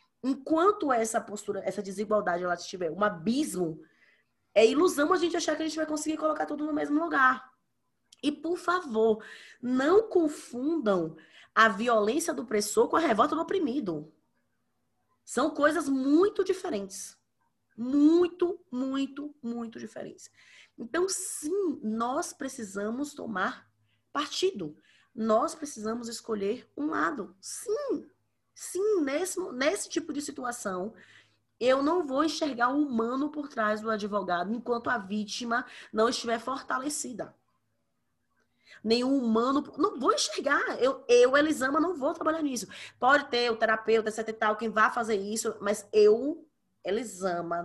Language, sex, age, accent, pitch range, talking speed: Portuguese, female, 20-39, Brazilian, 210-310 Hz, 135 wpm